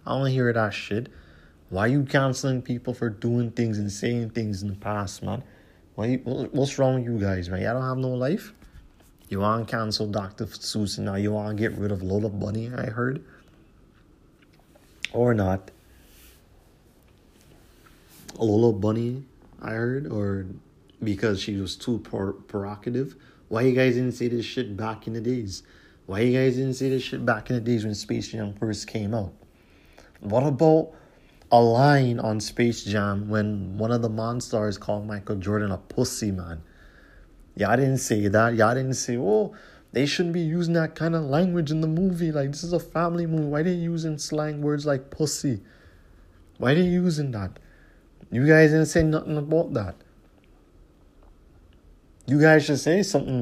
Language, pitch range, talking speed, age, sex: English, 100-135 Hz, 180 wpm, 30-49, male